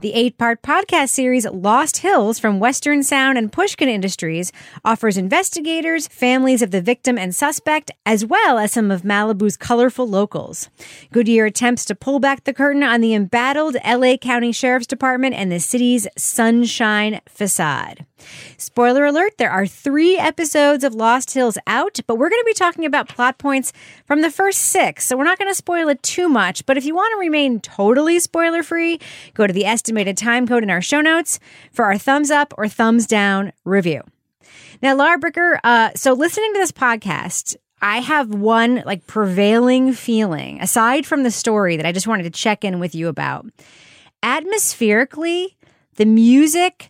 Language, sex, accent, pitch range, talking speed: English, female, American, 210-290 Hz, 175 wpm